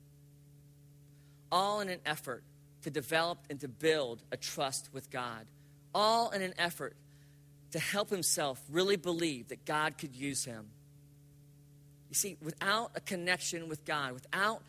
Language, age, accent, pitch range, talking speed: English, 40-59, American, 145-165 Hz, 145 wpm